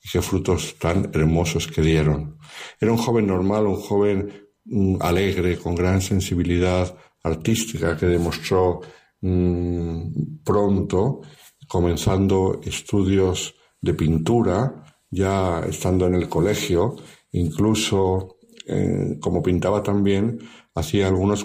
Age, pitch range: 60-79, 85-100 Hz